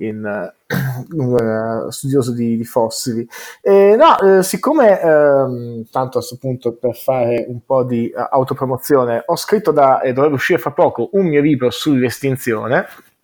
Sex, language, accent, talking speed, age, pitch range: male, Italian, native, 150 wpm, 20-39, 125-165 Hz